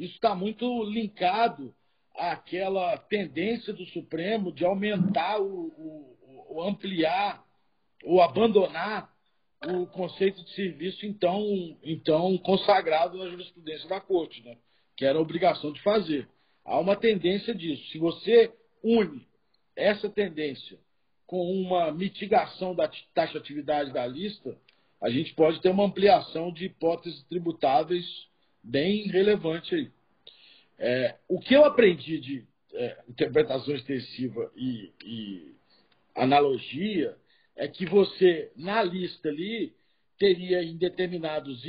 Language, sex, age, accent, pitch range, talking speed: Portuguese, male, 50-69, Brazilian, 165-210 Hz, 120 wpm